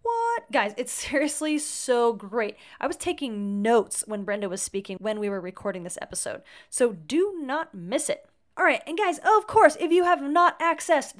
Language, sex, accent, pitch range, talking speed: English, female, American, 220-315 Hz, 195 wpm